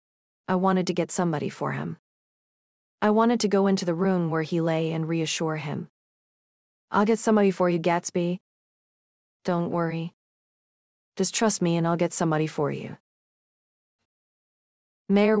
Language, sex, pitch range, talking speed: English, female, 165-200 Hz, 150 wpm